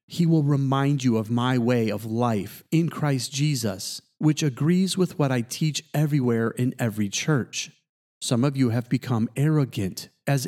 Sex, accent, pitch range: male, American, 115-150 Hz